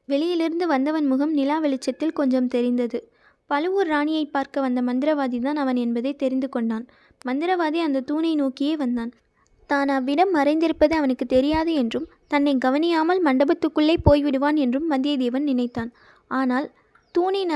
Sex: female